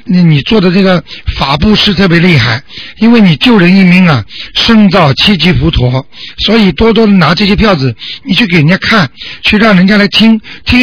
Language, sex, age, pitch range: Chinese, male, 50-69, 150-195 Hz